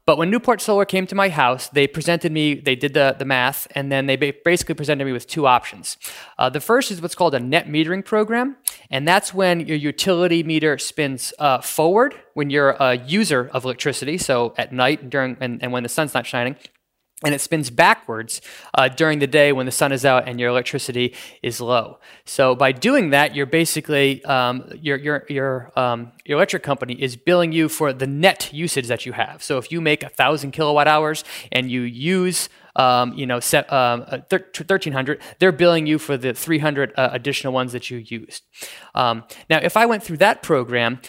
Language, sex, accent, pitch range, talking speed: English, male, American, 130-165 Hz, 205 wpm